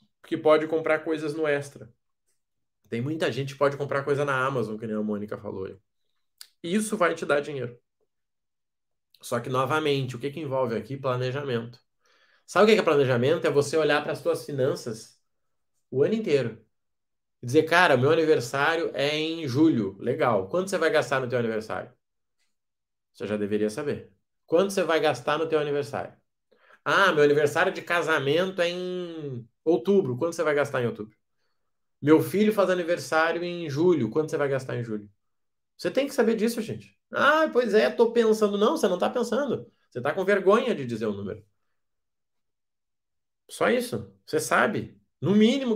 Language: Portuguese